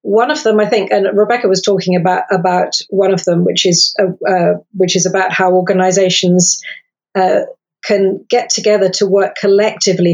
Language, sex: English, female